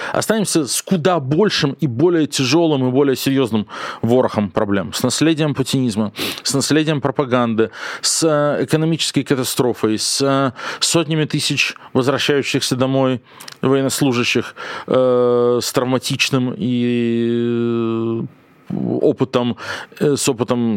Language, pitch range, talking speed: Russian, 115-150 Hz, 100 wpm